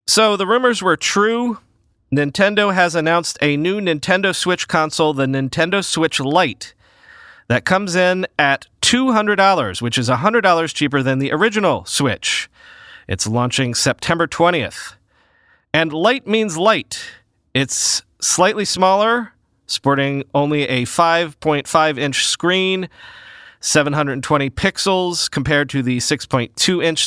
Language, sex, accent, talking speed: English, male, American, 115 wpm